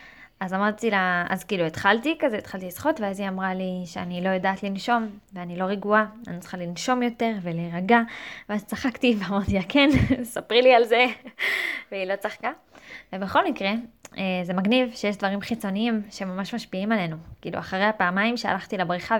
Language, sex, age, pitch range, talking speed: Hebrew, female, 20-39, 195-250 Hz, 160 wpm